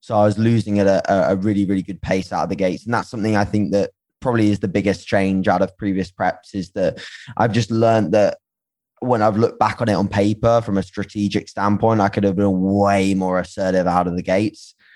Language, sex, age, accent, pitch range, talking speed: English, male, 20-39, British, 95-105 Hz, 235 wpm